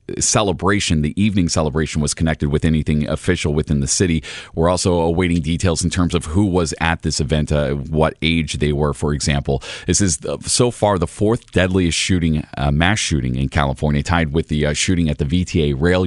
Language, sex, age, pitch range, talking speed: English, male, 30-49, 75-90 Hz, 200 wpm